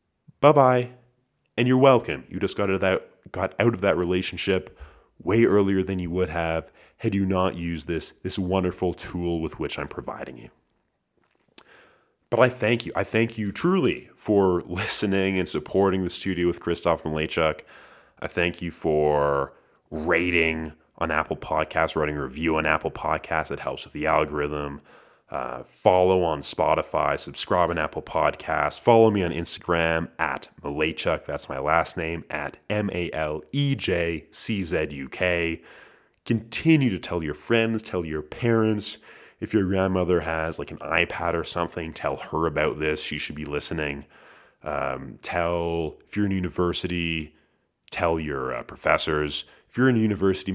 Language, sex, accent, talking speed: English, male, American, 150 wpm